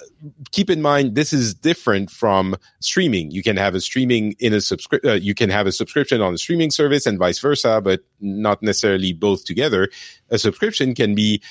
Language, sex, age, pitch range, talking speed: English, male, 40-59, 105-140 Hz, 195 wpm